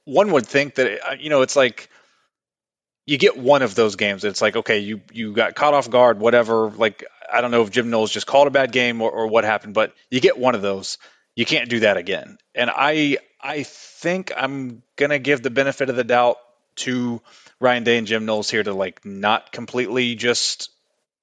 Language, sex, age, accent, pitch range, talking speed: English, male, 30-49, American, 110-130 Hz, 210 wpm